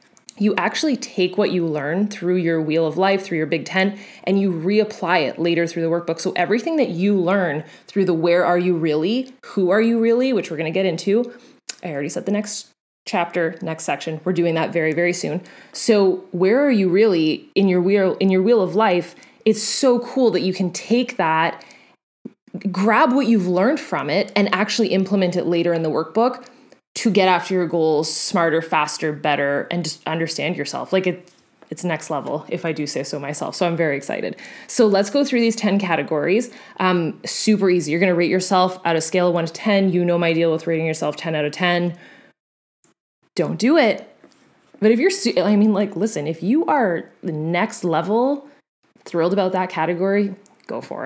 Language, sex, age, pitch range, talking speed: English, female, 20-39, 170-215 Hz, 205 wpm